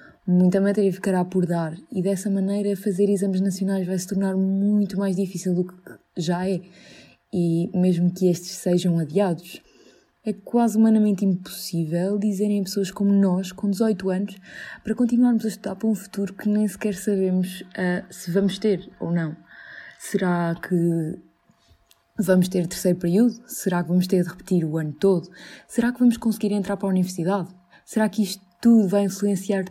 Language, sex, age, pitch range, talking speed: Portuguese, female, 20-39, 175-200 Hz, 170 wpm